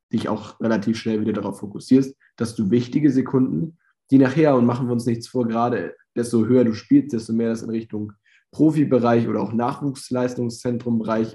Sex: male